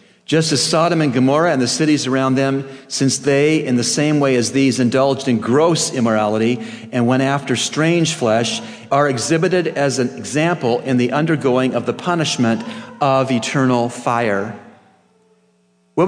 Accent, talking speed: American, 155 wpm